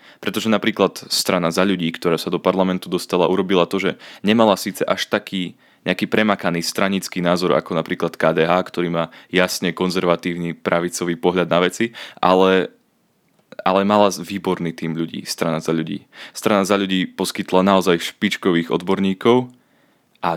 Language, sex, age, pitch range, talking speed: Slovak, male, 20-39, 85-100 Hz, 145 wpm